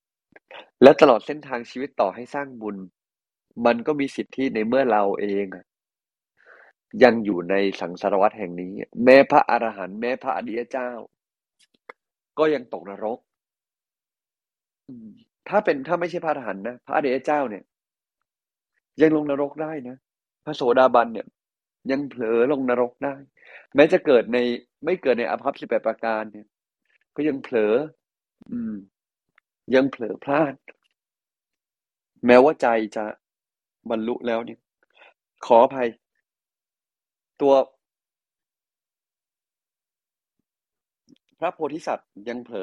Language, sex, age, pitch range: Thai, male, 20-39, 110-140 Hz